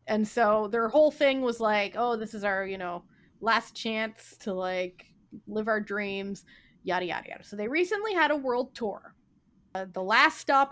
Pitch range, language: 200-270 Hz, English